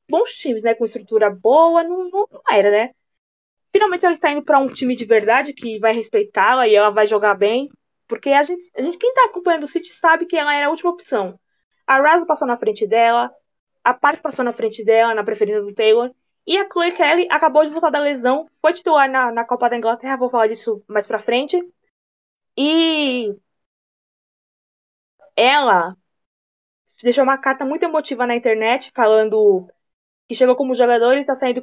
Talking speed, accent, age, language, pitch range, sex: 190 wpm, Brazilian, 20-39, Portuguese, 230-325 Hz, female